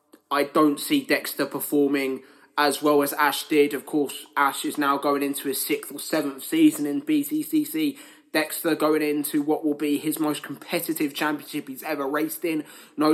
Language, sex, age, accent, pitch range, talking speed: English, male, 20-39, British, 145-165 Hz, 180 wpm